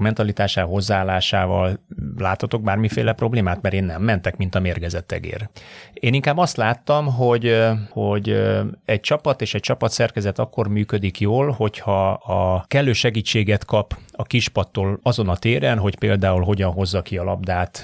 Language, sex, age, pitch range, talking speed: Hungarian, male, 30-49, 95-115 Hz, 150 wpm